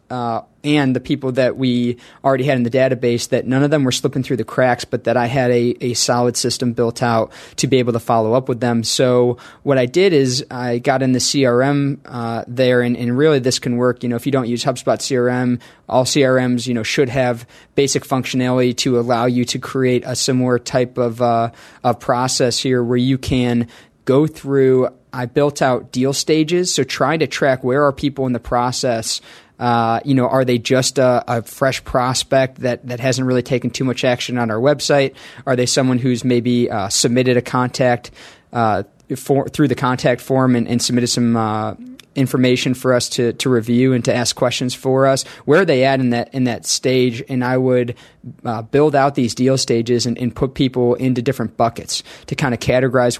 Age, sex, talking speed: 20-39, male, 210 wpm